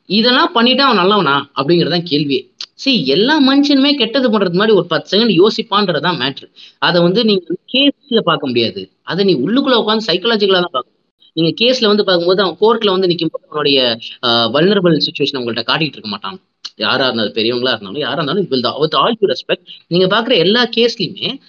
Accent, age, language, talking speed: native, 20-39, Tamil, 140 wpm